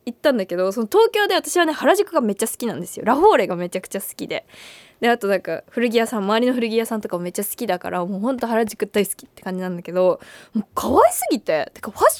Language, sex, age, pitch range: Japanese, female, 20-39, 190-255 Hz